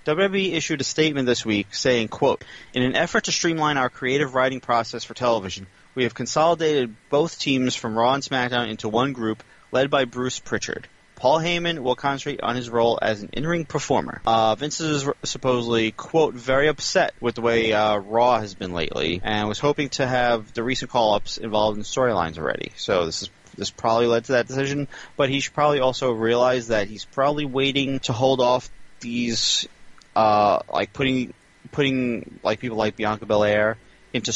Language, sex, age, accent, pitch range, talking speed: English, male, 30-49, American, 110-145 Hz, 185 wpm